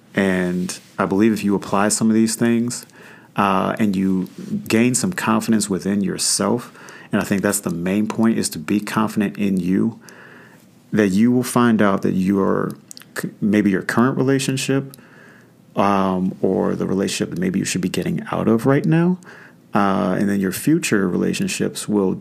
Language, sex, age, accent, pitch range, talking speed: English, male, 30-49, American, 100-140 Hz, 170 wpm